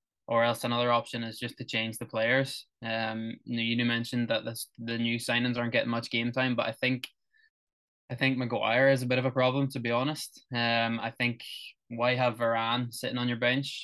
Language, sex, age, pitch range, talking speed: English, male, 20-39, 115-125 Hz, 210 wpm